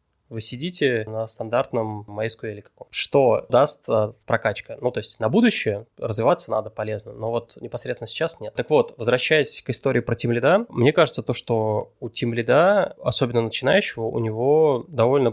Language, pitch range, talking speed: Russian, 110-125 Hz, 160 wpm